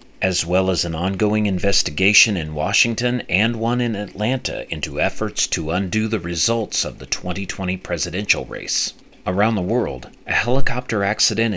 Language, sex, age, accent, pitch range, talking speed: English, male, 40-59, American, 85-110 Hz, 150 wpm